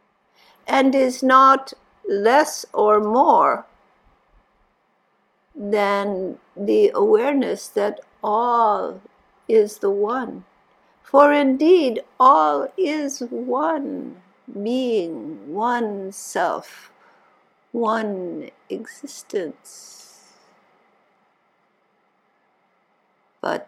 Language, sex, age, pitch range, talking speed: English, female, 60-79, 205-275 Hz, 65 wpm